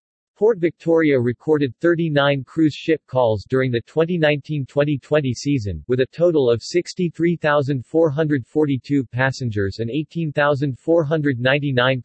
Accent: American